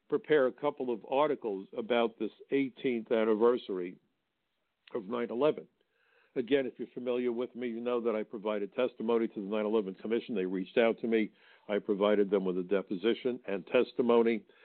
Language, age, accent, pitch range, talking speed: English, 60-79, American, 105-130 Hz, 165 wpm